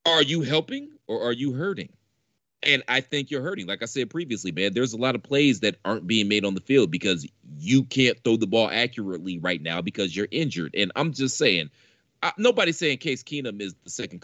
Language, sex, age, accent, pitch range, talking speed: English, male, 30-49, American, 100-140 Hz, 220 wpm